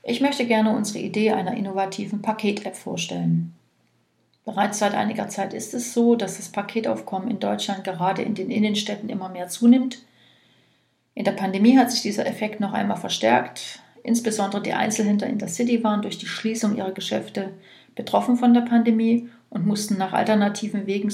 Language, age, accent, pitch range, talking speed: German, 40-59, German, 195-235 Hz, 165 wpm